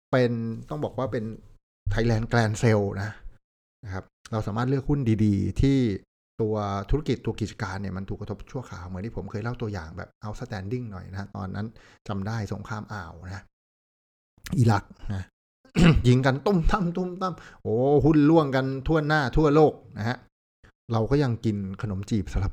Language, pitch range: Thai, 100-140 Hz